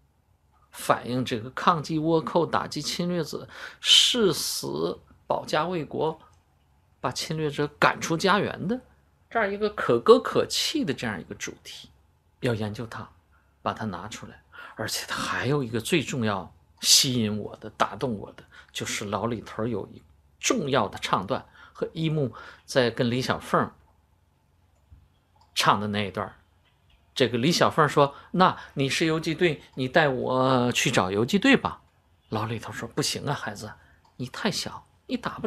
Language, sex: Chinese, male